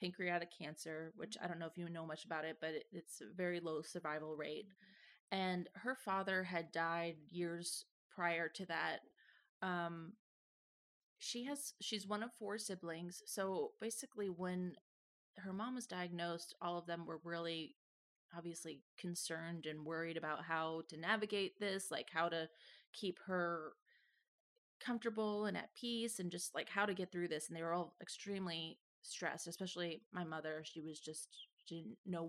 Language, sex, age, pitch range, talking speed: English, female, 20-39, 165-195 Hz, 165 wpm